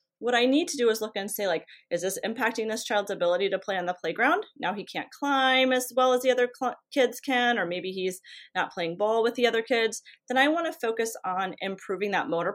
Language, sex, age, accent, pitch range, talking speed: English, female, 30-49, American, 195-255 Hz, 250 wpm